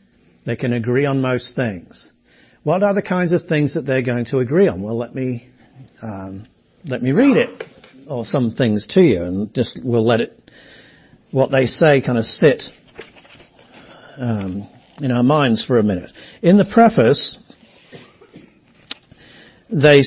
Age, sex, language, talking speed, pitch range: 50-69, male, English, 160 wpm, 125-165 Hz